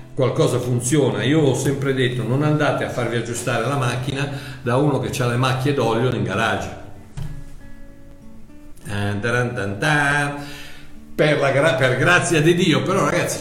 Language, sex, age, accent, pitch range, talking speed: Italian, male, 60-79, native, 115-160 Hz, 140 wpm